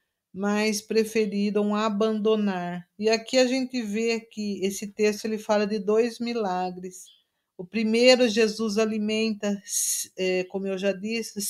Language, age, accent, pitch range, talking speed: Portuguese, 50-69, Brazilian, 195-225 Hz, 120 wpm